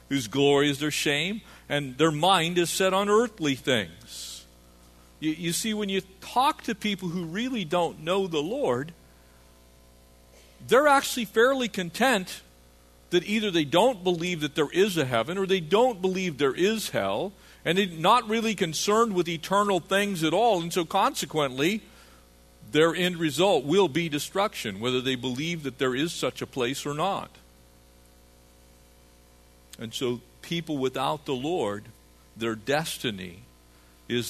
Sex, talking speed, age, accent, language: male, 150 wpm, 50-69, American, English